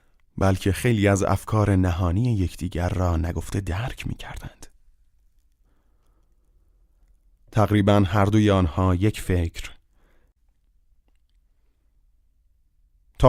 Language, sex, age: Persian, male, 30-49